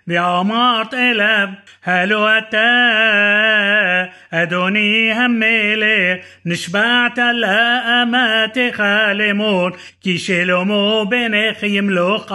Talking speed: 80 wpm